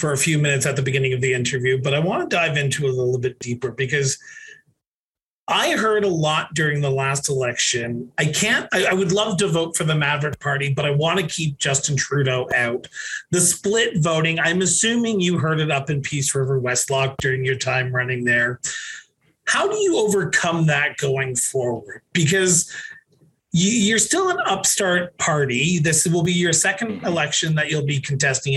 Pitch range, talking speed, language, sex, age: 135-180 Hz, 190 wpm, English, male, 30-49